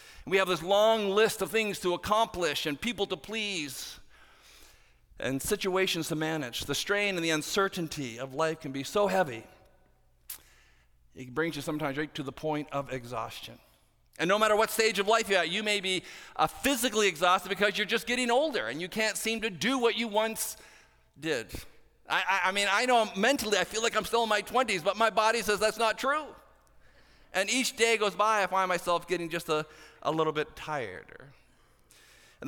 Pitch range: 135-205 Hz